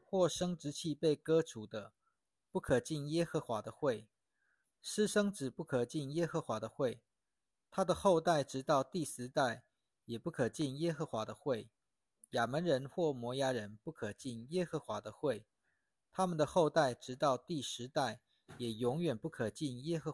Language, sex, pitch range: Chinese, male, 115-160 Hz